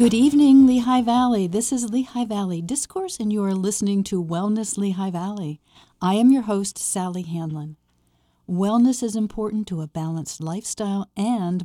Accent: American